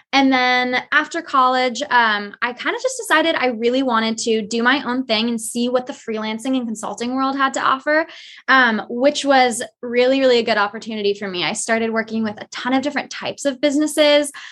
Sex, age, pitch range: female, 20-39, 220-255 Hz